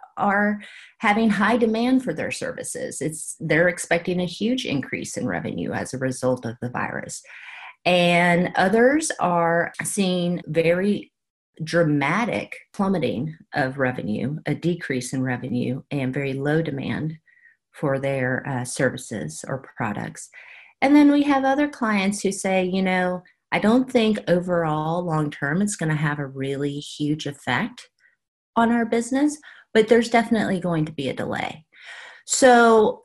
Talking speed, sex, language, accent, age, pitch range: 145 wpm, female, English, American, 40-59, 145-205 Hz